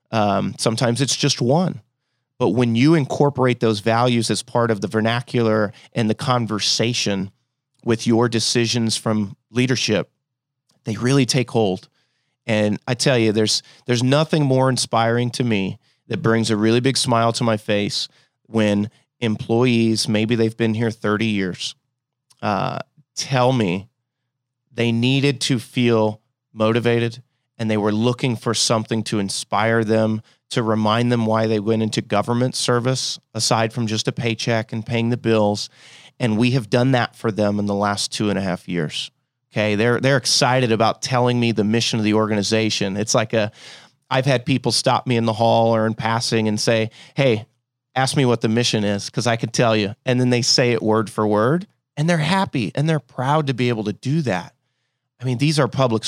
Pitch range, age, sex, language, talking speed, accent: 110-130 Hz, 30-49, male, English, 185 wpm, American